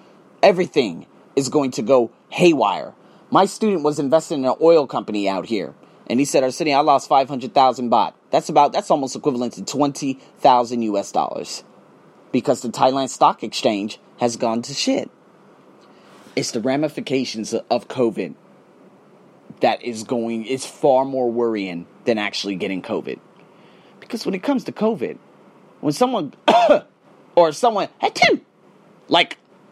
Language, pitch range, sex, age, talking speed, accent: English, 130-205 Hz, male, 30-49, 145 wpm, American